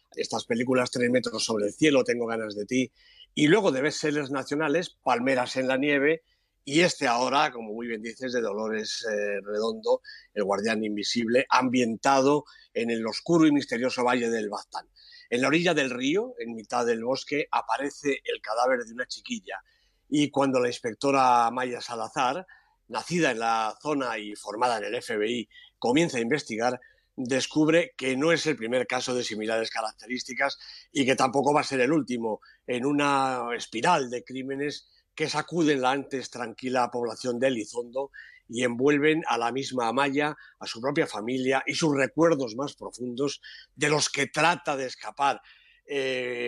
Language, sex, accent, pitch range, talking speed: Spanish, male, Spanish, 120-150 Hz, 165 wpm